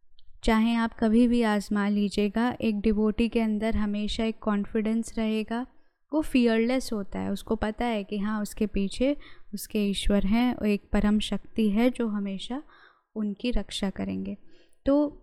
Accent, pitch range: native, 210-240 Hz